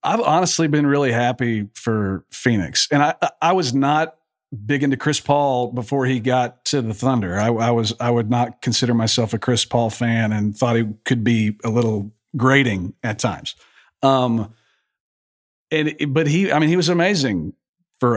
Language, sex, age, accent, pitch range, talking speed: English, male, 40-59, American, 120-145 Hz, 170 wpm